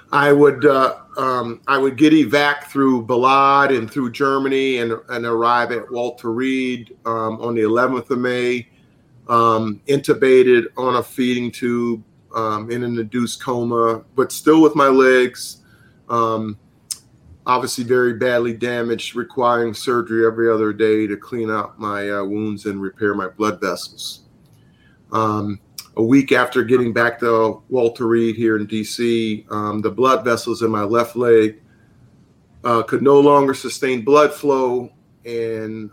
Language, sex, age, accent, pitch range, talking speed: English, male, 40-59, American, 110-125 Hz, 150 wpm